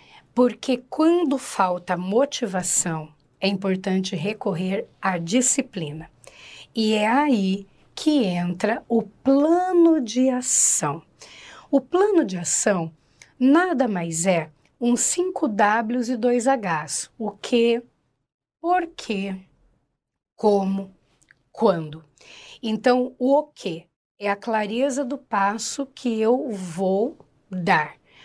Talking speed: 110 wpm